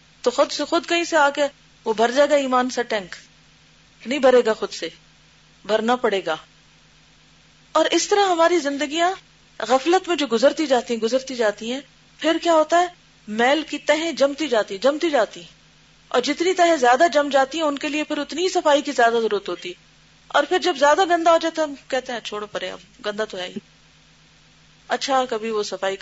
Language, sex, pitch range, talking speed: Urdu, female, 205-300 Hz, 200 wpm